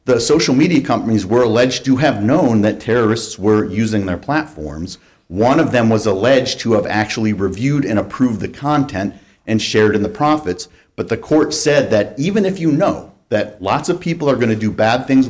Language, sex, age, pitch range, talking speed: English, male, 50-69, 100-130 Hz, 205 wpm